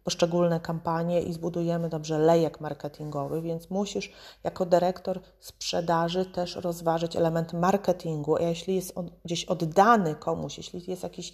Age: 30-49